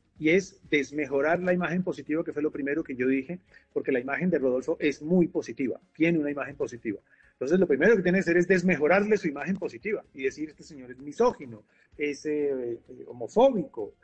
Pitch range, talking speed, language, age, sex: 165-220 Hz, 200 wpm, Spanish, 40-59, male